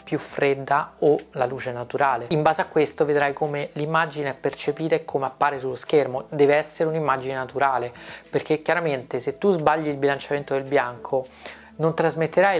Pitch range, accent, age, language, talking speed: 140-160 Hz, native, 30-49, Italian, 165 wpm